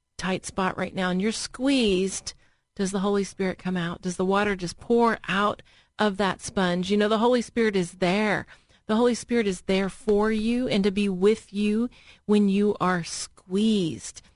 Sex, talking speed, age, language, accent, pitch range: female, 190 wpm, 40-59, English, American, 185-240 Hz